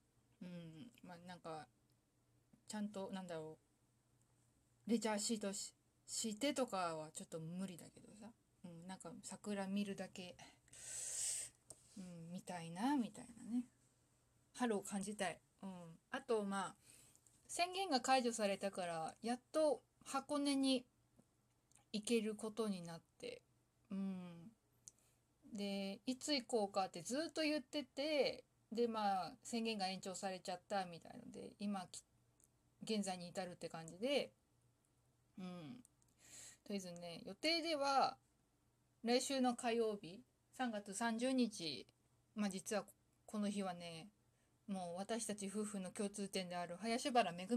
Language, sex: Japanese, female